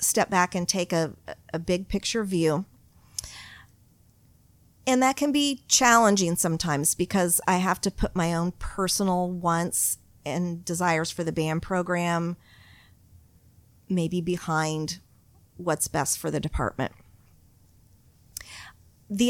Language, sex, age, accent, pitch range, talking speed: English, female, 40-59, American, 160-195 Hz, 120 wpm